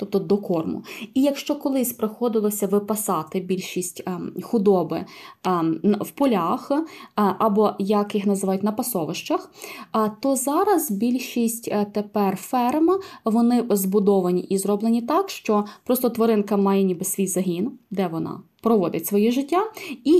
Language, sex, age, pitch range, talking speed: Ukrainian, female, 20-39, 200-255 Hz, 120 wpm